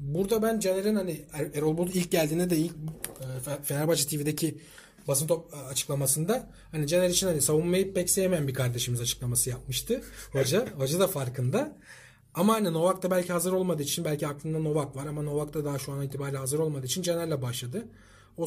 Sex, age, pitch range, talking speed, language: male, 40-59, 135-175 Hz, 170 wpm, Turkish